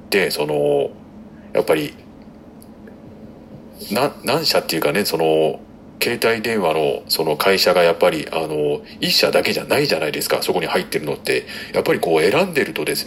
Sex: male